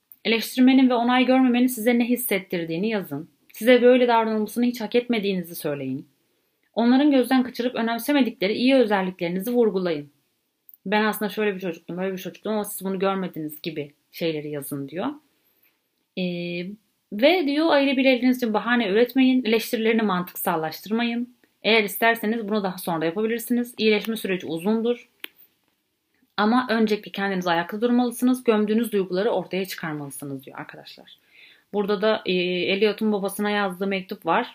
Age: 30-49